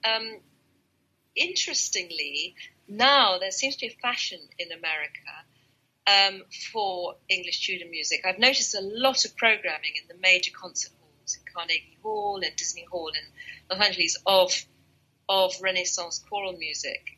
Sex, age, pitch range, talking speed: female, 40-59, 175-210 Hz, 145 wpm